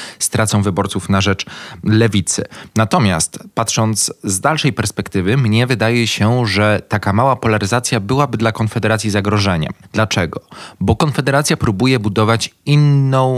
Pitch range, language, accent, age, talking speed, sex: 100-125 Hz, Polish, native, 20-39, 120 wpm, male